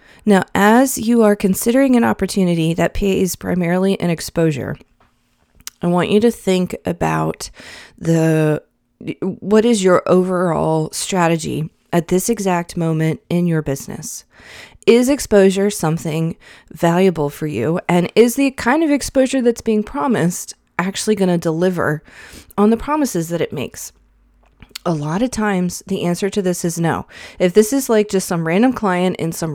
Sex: female